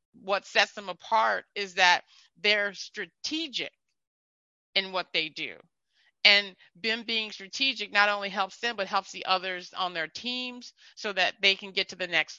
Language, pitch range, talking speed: English, 180-230 Hz, 170 wpm